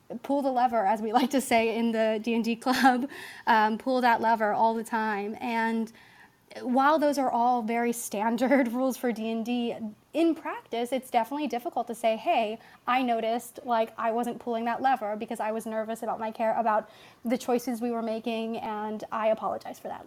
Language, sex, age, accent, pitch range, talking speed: English, female, 20-39, American, 225-260 Hz, 190 wpm